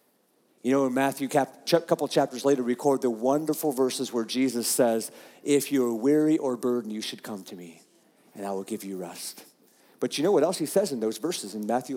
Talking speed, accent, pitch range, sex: 220 wpm, American, 120-170 Hz, male